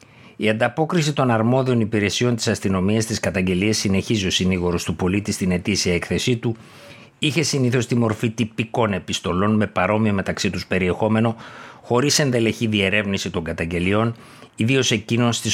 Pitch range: 95-115 Hz